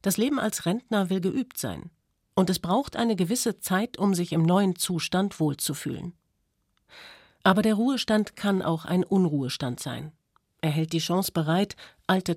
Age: 50-69